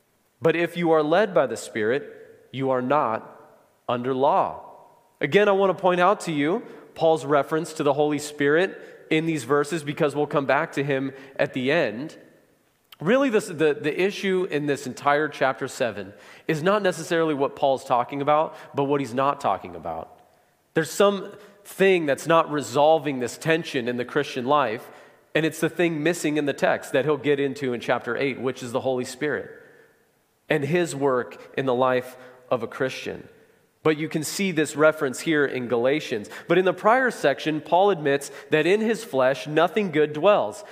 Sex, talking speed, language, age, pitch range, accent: male, 185 wpm, English, 30-49, 140-185 Hz, American